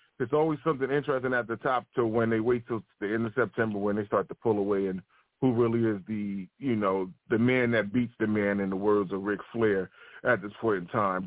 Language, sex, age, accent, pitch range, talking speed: English, male, 30-49, American, 110-135 Hz, 245 wpm